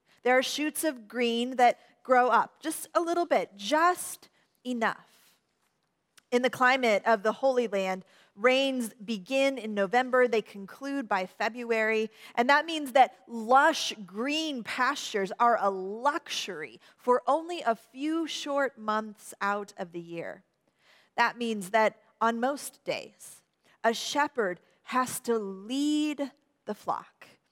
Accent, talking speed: American, 135 wpm